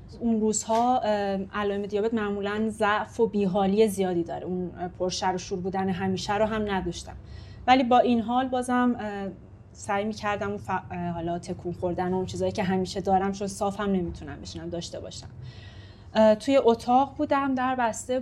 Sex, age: female, 30-49